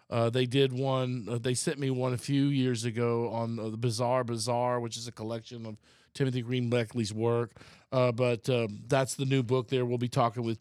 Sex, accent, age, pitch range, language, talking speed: male, American, 40-59, 115-135 Hz, English, 220 wpm